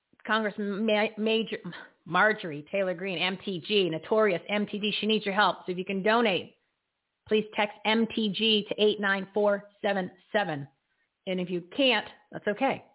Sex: female